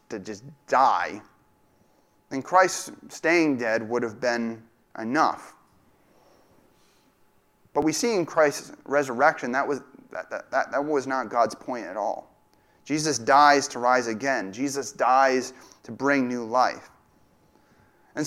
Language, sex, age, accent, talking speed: English, male, 30-49, American, 130 wpm